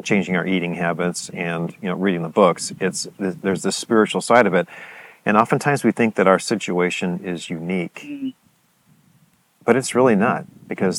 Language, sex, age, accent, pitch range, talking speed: English, male, 40-59, American, 90-120 Hz, 170 wpm